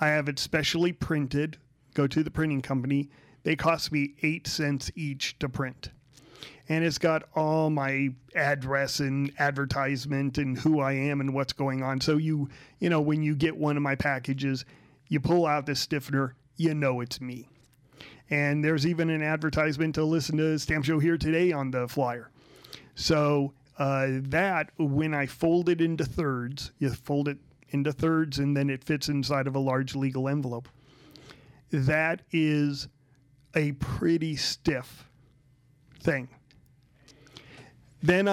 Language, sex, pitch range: English, male, 135-155 Hz